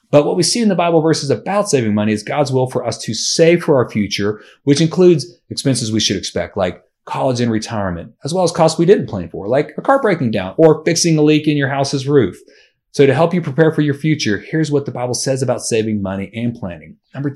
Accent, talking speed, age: American, 245 wpm, 30-49